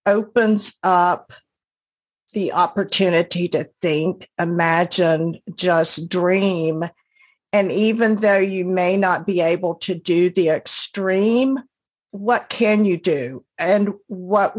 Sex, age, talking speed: female, 50-69, 110 wpm